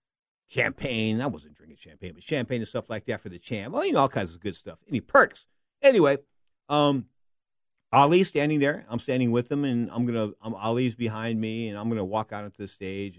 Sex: male